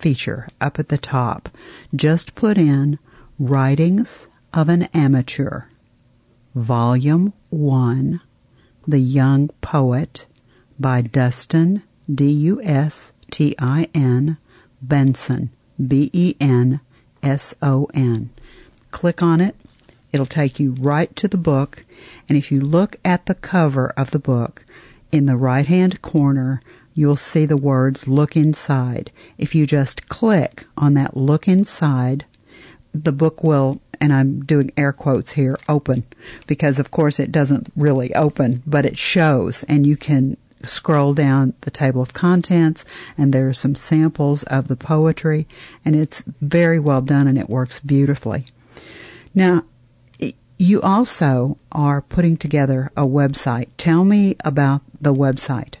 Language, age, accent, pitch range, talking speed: English, 50-69, American, 130-155 Hz, 130 wpm